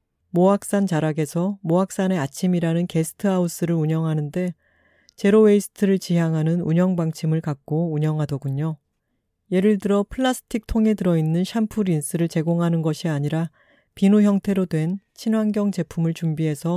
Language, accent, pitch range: Korean, native, 155-195 Hz